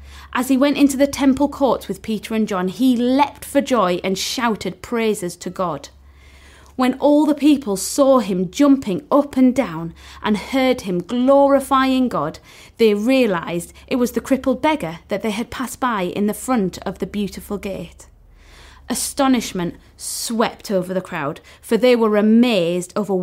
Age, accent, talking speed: 30-49, British, 165 wpm